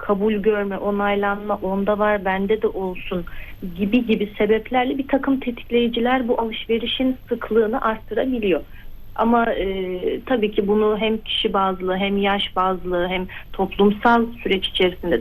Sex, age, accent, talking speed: female, 40-59, native, 130 wpm